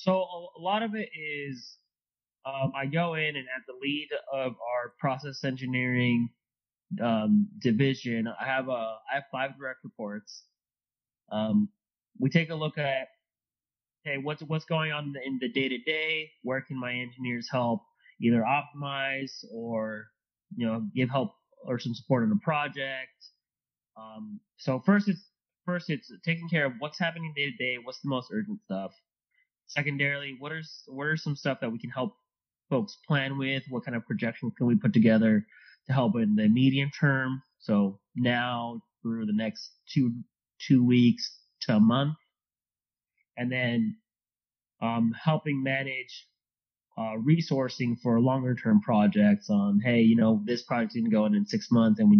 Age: 20-39